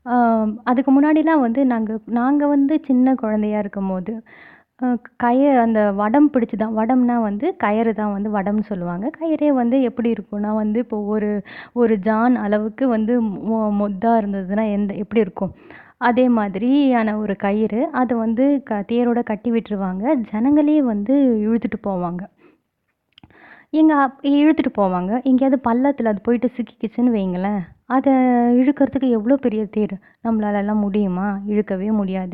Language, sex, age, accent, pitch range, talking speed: Tamil, female, 20-39, native, 205-255 Hz, 125 wpm